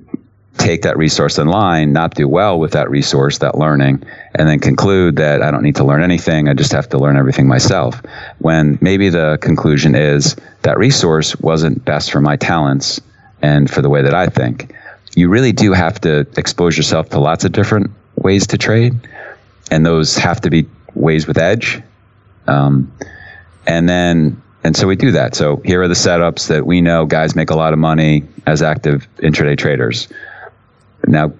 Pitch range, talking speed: 75-95 Hz, 185 wpm